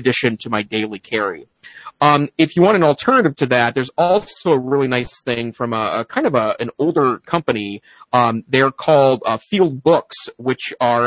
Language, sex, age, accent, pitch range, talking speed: English, male, 30-49, American, 120-155 Hz, 195 wpm